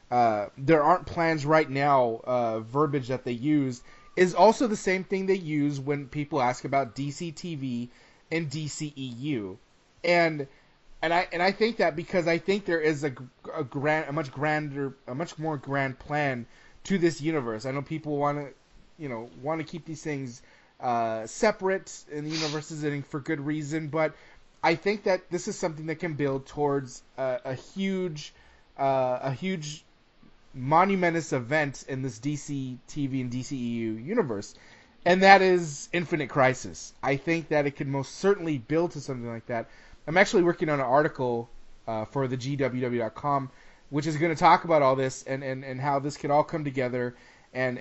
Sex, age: male, 20-39